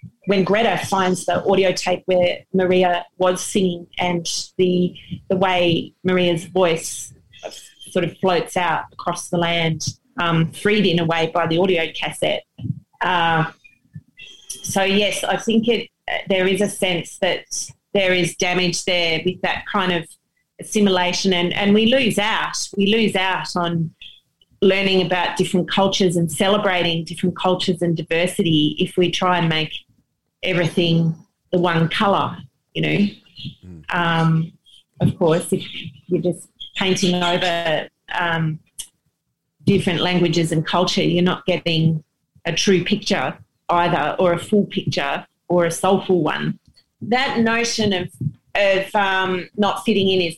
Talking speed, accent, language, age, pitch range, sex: 140 wpm, Australian, English, 30-49, 170-195 Hz, female